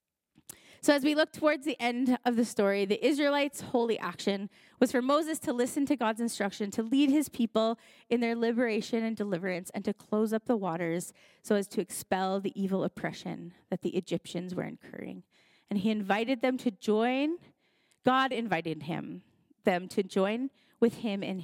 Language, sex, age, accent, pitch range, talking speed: English, female, 20-39, American, 195-235 Hz, 180 wpm